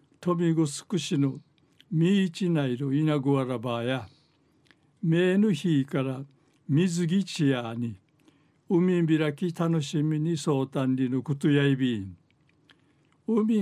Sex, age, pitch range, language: male, 60-79, 140-170 Hz, Japanese